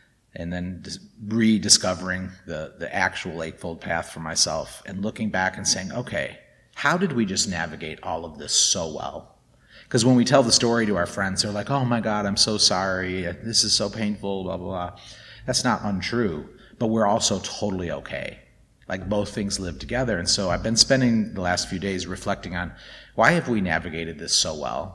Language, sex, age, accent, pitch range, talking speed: English, male, 30-49, American, 90-110 Hz, 195 wpm